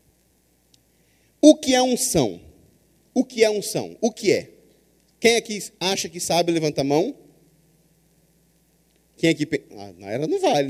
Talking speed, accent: 140 wpm, Brazilian